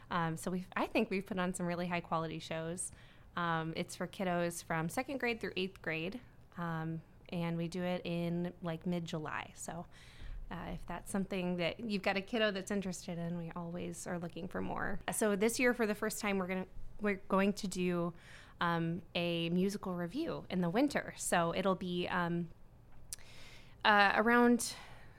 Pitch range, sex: 170-200 Hz, female